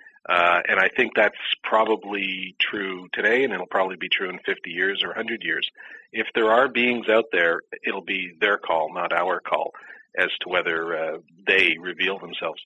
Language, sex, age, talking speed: English, male, 40-59, 185 wpm